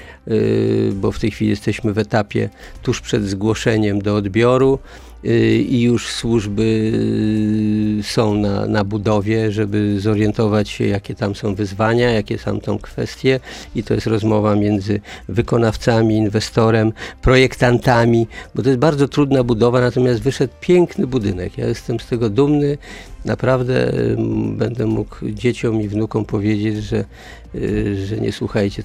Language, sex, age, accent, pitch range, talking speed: Polish, male, 50-69, native, 105-125 Hz, 135 wpm